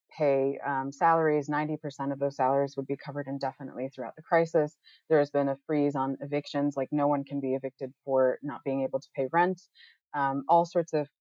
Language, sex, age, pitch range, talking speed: English, female, 30-49, 135-155 Hz, 210 wpm